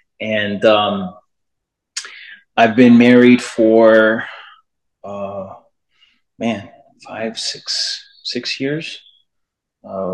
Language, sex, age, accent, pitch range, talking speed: English, male, 30-49, American, 110-130 Hz, 75 wpm